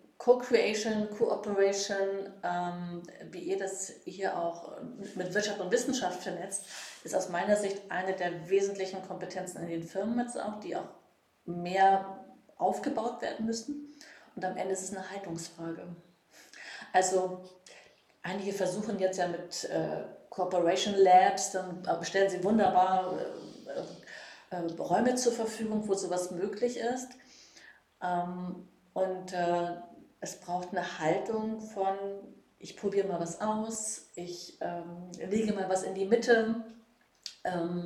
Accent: German